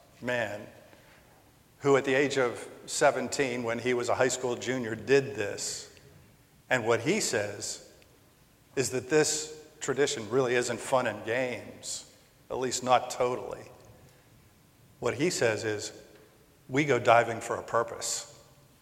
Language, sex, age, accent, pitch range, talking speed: English, male, 50-69, American, 115-140 Hz, 135 wpm